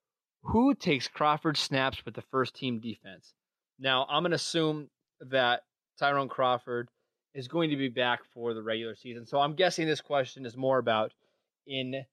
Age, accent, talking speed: 20-39, American, 170 wpm